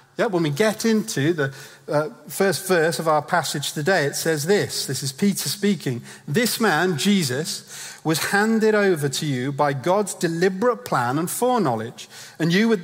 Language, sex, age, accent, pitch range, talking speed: English, male, 40-59, British, 145-195 Hz, 170 wpm